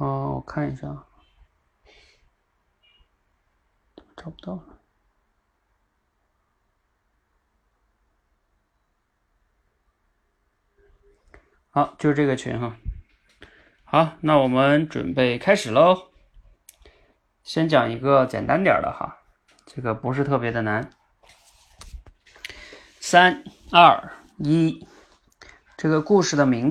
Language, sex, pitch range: Chinese, male, 110-150 Hz